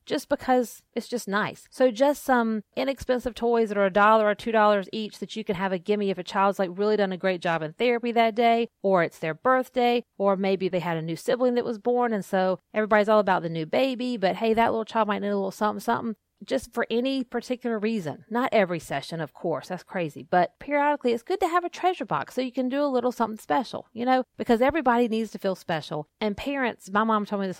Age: 40-59